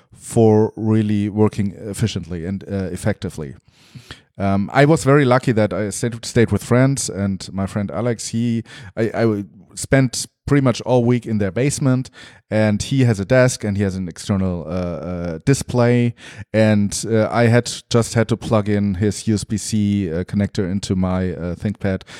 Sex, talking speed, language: male, 170 wpm, English